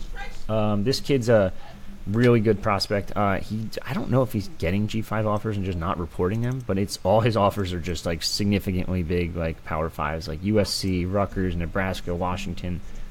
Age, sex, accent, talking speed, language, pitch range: 30-49, male, American, 180 wpm, English, 90-110 Hz